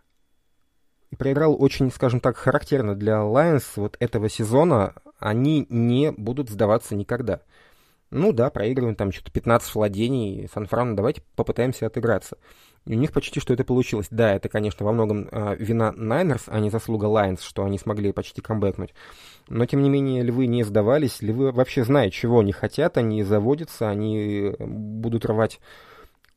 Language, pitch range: Russian, 105-125 Hz